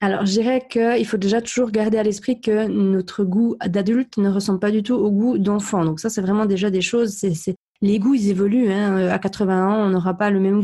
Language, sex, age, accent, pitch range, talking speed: French, female, 20-39, French, 190-225 Hz, 250 wpm